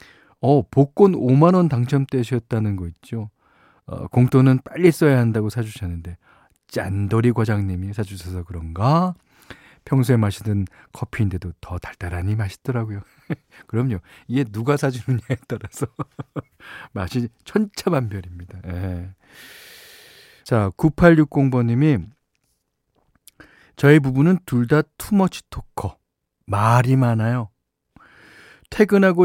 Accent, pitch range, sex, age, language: native, 110-170 Hz, male, 40-59, Korean